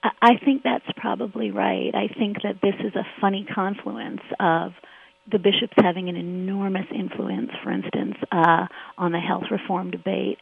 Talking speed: 160 wpm